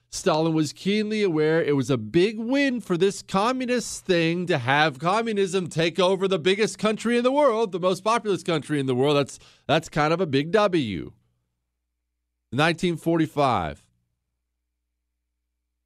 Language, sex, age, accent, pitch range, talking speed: English, male, 40-59, American, 80-135 Hz, 150 wpm